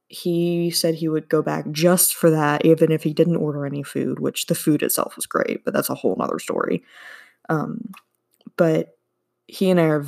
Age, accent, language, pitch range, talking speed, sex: 20-39, American, English, 150-195 Hz, 200 wpm, female